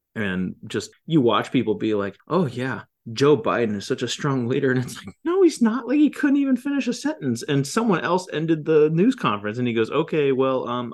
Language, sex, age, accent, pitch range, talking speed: English, male, 30-49, American, 105-140 Hz, 230 wpm